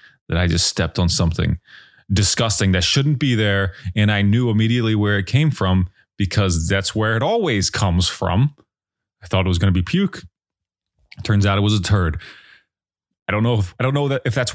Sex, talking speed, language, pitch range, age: male, 210 wpm, English, 95-135 Hz, 30-49